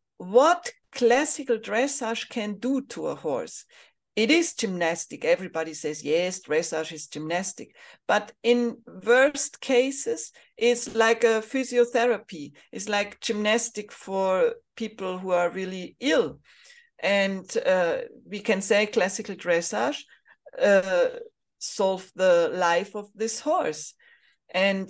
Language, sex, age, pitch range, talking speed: English, female, 40-59, 185-250 Hz, 120 wpm